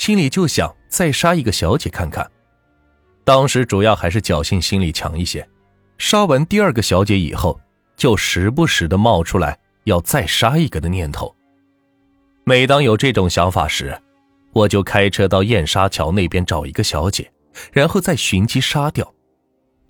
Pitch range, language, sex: 85-120 Hz, Chinese, male